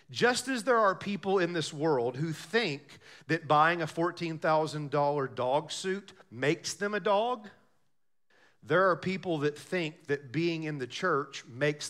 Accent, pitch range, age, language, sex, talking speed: American, 155-245 Hz, 40-59, English, male, 155 wpm